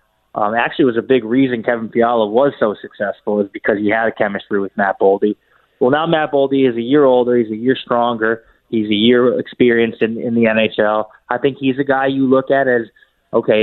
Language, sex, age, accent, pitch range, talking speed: English, male, 20-39, American, 110-130 Hz, 220 wpm